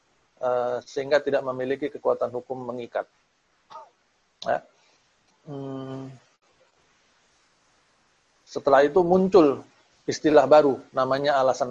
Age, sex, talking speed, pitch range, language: 40-59, male, 65 wpm, 135-180 Hz, Indonesian